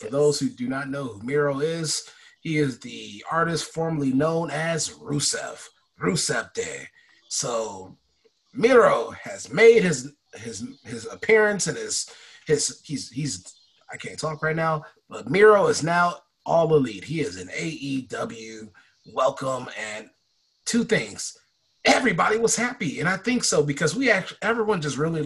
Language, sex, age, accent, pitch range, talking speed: English, male, 30-49, American, 130-175 Hz, 150 wpm